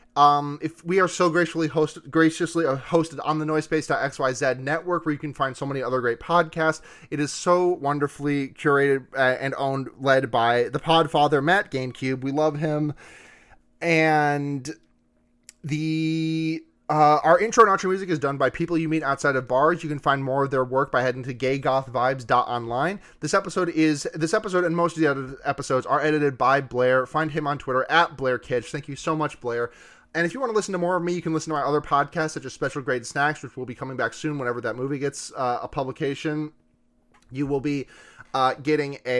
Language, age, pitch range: English, 30-49, 135-160 Hz